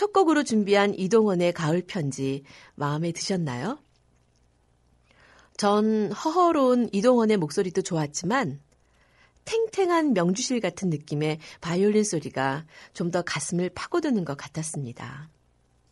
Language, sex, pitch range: Korean, female, 160-235 Hz